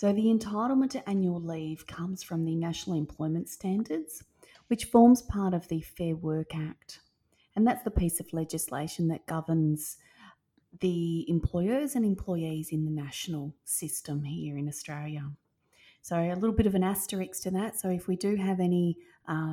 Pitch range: 160-210 Hz